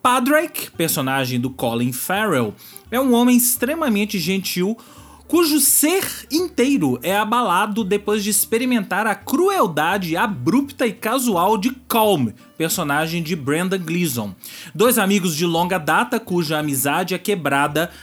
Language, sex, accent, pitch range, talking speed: Portuguese, male, Brazilian, 155-225 Hz, 125 wpm